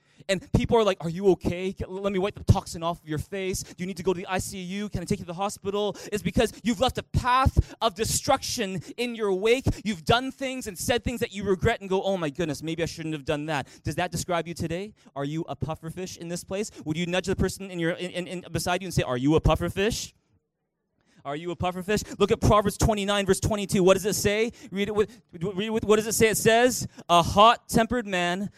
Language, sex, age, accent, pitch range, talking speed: English, male, 20-39, American, 175-240 Hz, 255 wpm